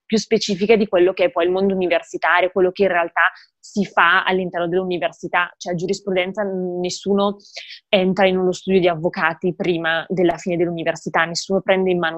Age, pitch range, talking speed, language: 20-39, 170-195 Hz, 175 wpm, Italian